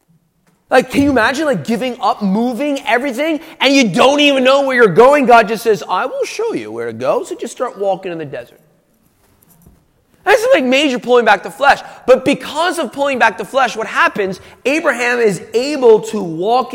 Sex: male